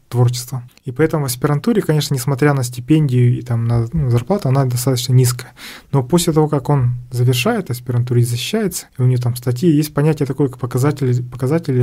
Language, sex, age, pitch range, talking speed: Russian, male, 20-39, 125-140 Hz, 180 wpm